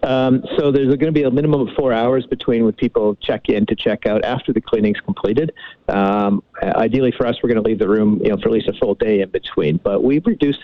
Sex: male